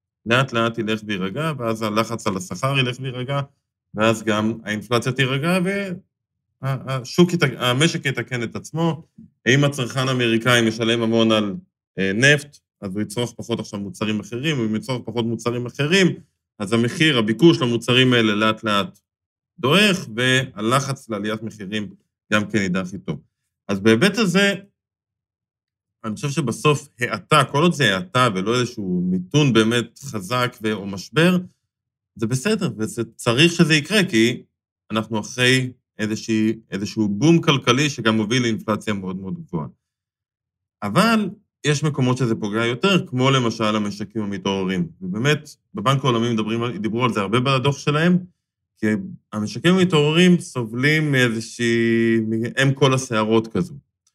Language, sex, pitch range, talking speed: Hebrew, male, 110-145 Hz, 130 wpm